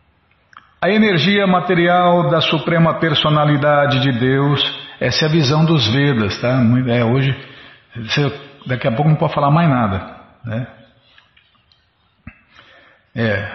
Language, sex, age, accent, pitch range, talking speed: Portuguese, male, 50-69, Brazilian, 115-150 Hz, 120 wpm